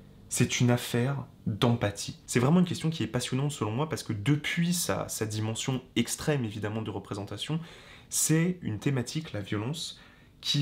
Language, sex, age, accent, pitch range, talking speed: French, male, 20-39, French, 110-140 Hz, 165 wpm